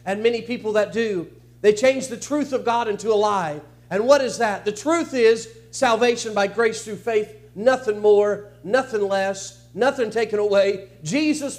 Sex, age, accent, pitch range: male, 50-69, American, 160-240 Hz